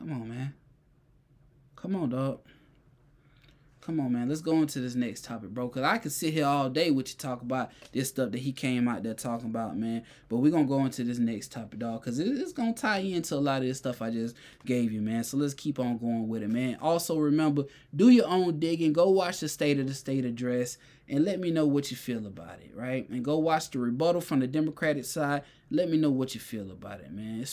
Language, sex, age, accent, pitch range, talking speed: English, male, 20-39, American, 115-140 Hz, 250 wpm